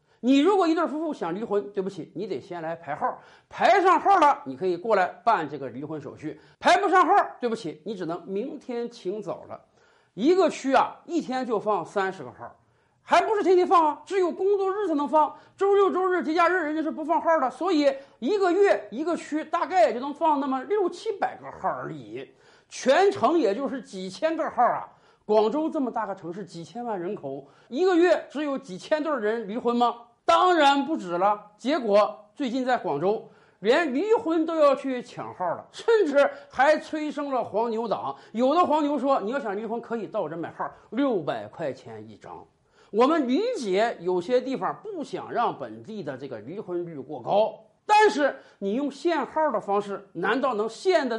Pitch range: 205-330 Hz